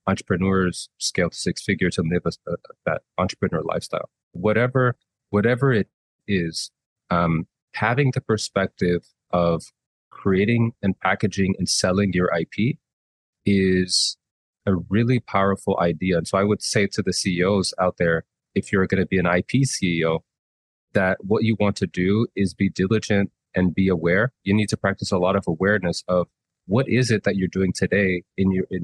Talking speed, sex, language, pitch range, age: 175 wpm, male, English, 90-105 Hz, 30-49